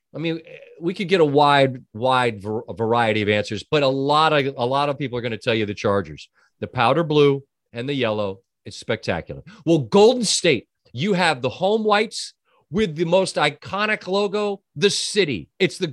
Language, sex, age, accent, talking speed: English, male, 40-59, American, 190 wpm